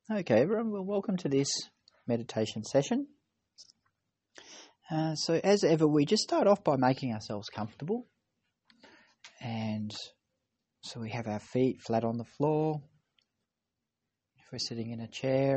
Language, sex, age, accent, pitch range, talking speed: English, male, 40-59, Australian, 115-145 Hz, 140 wpm